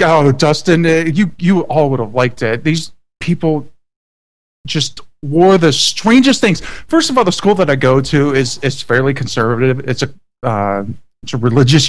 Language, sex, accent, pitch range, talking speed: English, male, American, 125-155 Hz, 175 wpm